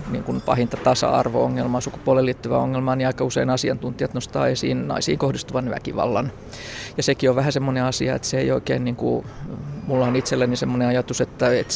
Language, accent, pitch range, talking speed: Finnish, native, 115-135 Hz, 180 wpm